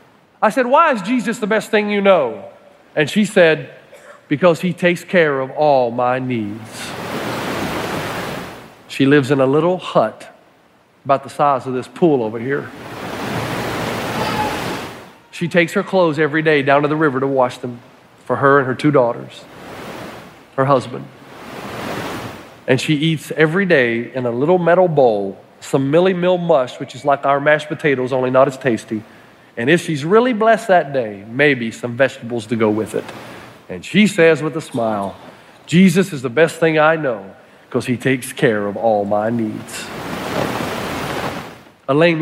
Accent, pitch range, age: American, 130-175 Hz, 40-59